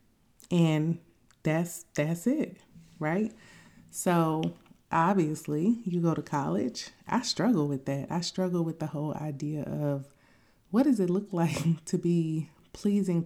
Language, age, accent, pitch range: English, 30-49, American, 150-185 Hz